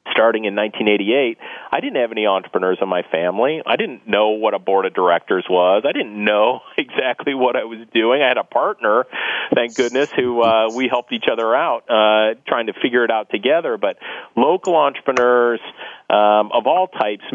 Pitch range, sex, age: 100-115 Hz, male, 40-59